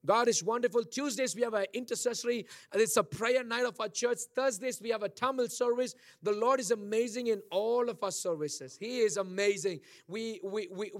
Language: English